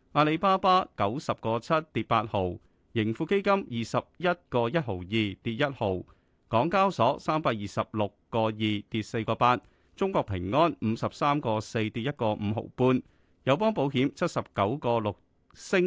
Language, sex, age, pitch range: Chinese, male, 30-49, 105-150 Hz